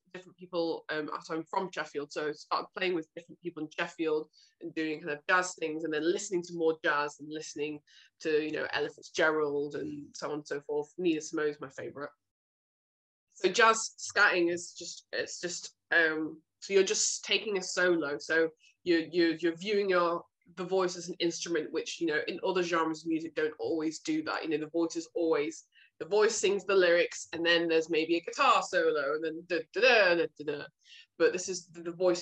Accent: British